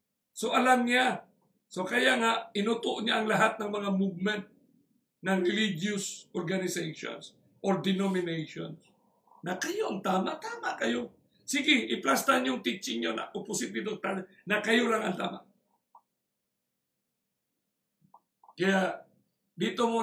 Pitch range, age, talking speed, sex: 190-230 Hz, 50-69, 115 wpm, male